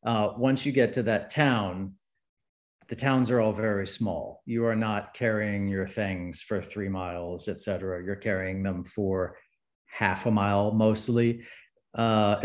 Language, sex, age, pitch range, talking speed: English, male, 40-59, 95-115 Hz, 155 wpm